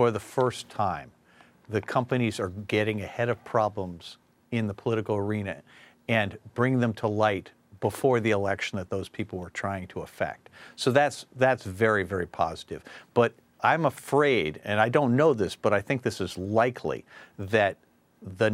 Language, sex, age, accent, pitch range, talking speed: English, male, 50-69, American, 100-130 Hz, 170 wpm